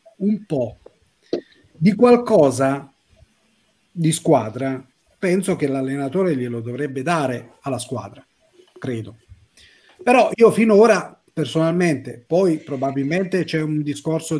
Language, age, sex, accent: Italian, 40-59, male, native